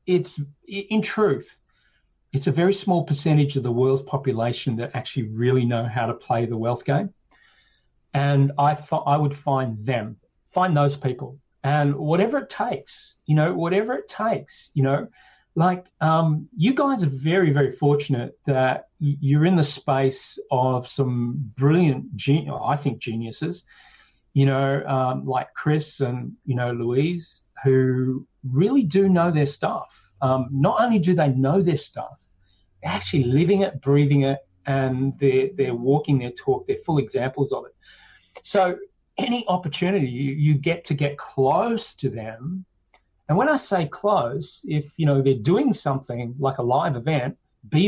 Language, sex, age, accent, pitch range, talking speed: English, male, 40-59, Australian, 135-175 Hz, 165 wpm